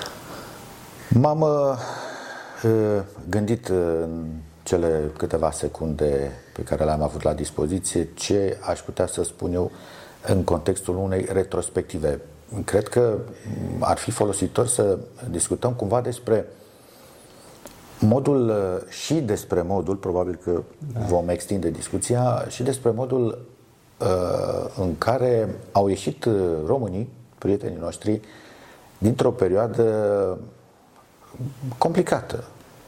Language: Romanian